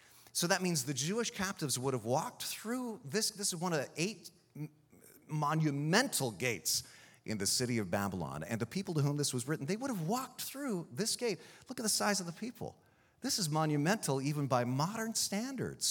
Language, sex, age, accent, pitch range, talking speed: English, male, 40-59, American, 135-220 Hz, 200 wpm